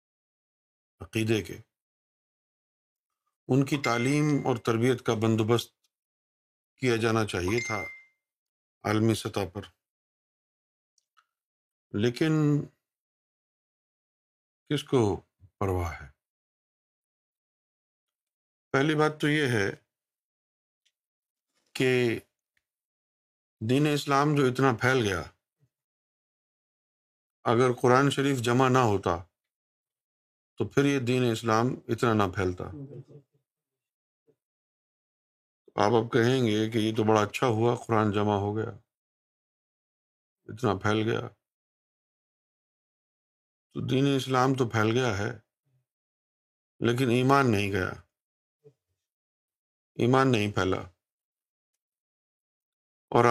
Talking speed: 90 wpm